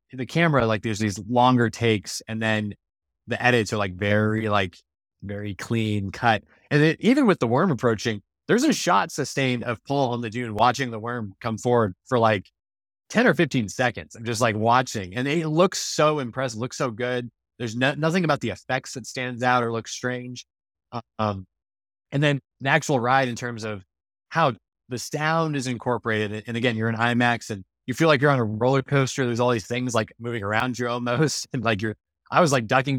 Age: 20-39